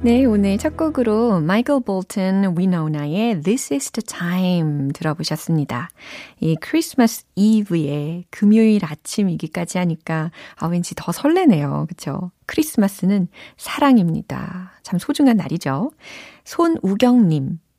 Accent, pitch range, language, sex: native, 165-235 Hz, Korean, female